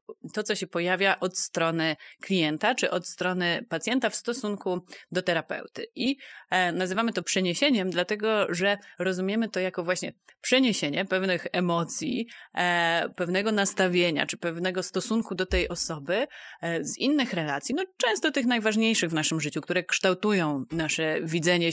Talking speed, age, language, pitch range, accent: 135 wpm, 30-49, Polish, 165-205 Hz, native